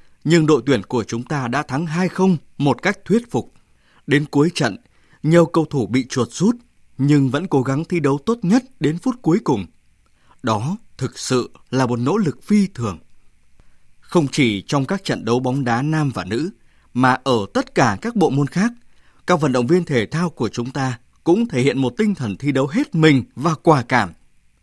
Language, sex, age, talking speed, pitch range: Vietnamese, male, 20-39, 205 wpm, 125-170 Hz